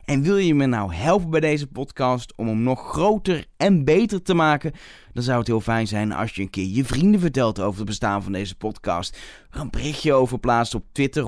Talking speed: 225 wpm